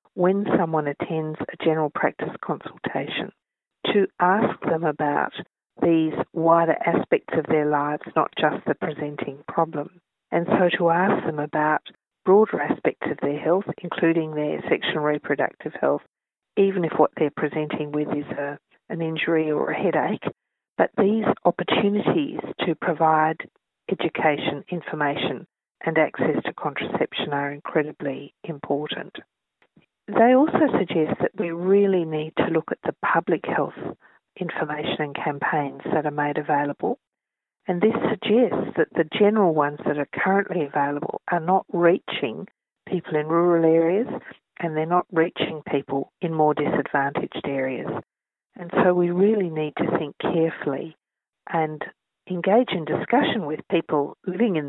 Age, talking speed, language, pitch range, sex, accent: 50-69, 140 wpm, English, 150-185 Hz, female, Australian